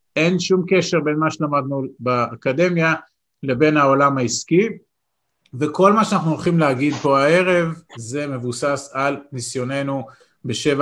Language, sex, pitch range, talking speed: Hebrew, male, 130-165 Hz, 120 wpm